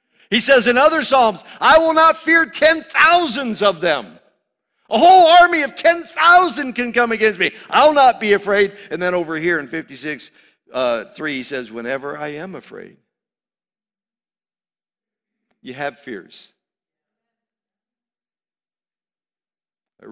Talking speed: 125 wpm